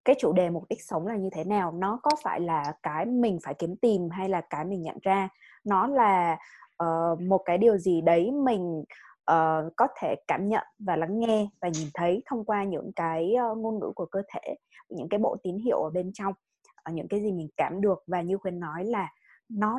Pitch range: 175-220 Hz